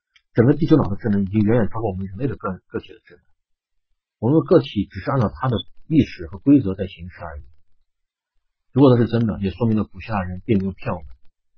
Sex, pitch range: male, 85-110 Hz